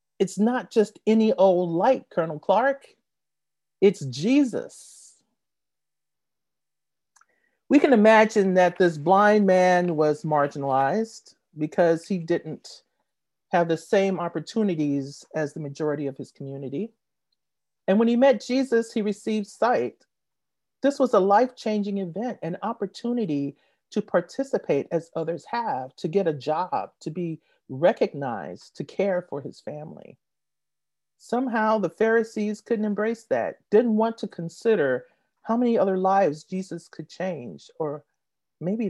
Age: 40-59